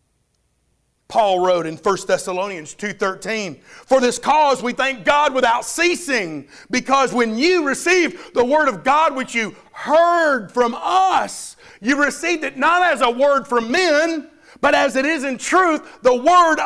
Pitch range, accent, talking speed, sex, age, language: 185-270 Hz, American, 160 wpm, male, 50-69, English